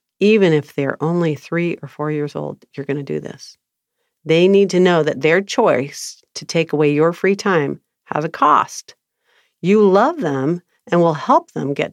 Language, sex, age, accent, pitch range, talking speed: English, female, 50-69, American, 155-200 Hz, 190 wpm